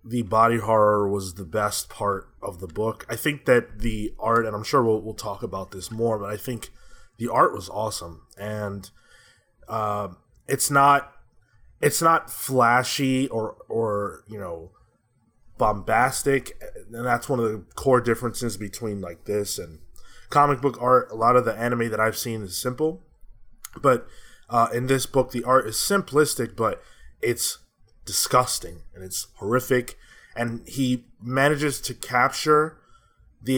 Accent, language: American, English